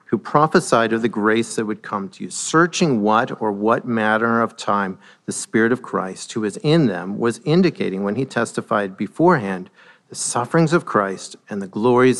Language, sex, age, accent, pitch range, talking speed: English, male, 50-69, American, 110-165 Hz, 185 wpm